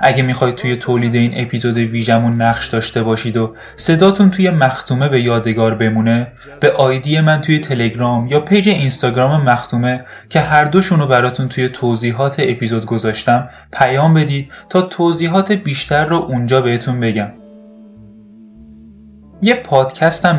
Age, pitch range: 10-29, 115-155 Hz